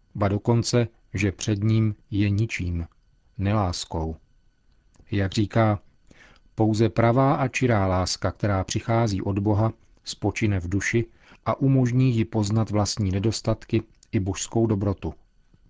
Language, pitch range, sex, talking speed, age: Czech, 100-115 Hz, male, 120 wpm, 40-59